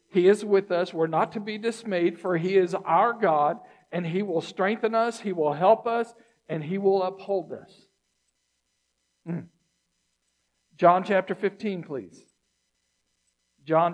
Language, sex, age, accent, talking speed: English, male, 60-79, American, 145 wpm